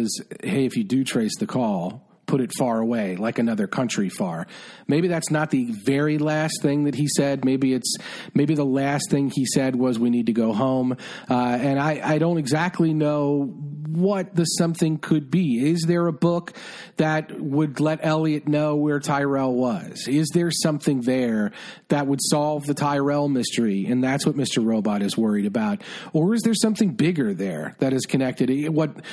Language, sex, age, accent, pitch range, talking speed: English, male, 40-59, American, 140-180 Hz, 185 wpm